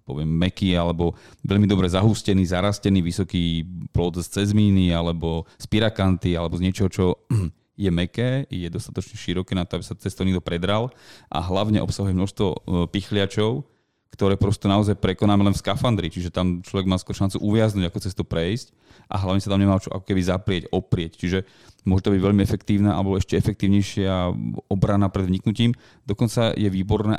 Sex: male